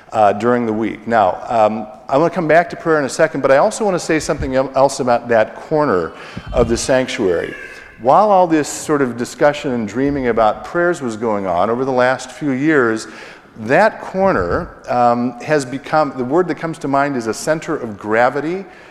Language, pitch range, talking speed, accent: English, 115-145 Hz, 205 wpm, American